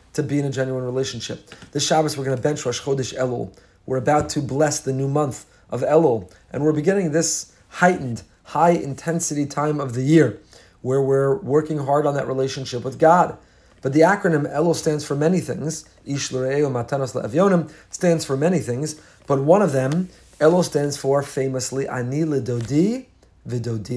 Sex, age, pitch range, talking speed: male, 40-59, 130-160 Hz, 170 wpm